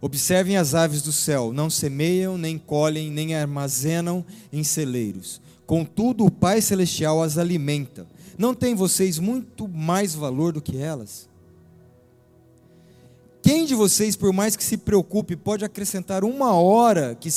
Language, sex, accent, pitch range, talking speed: Portuguese, male, Brazilian, 145-195 Hz, 140 wpm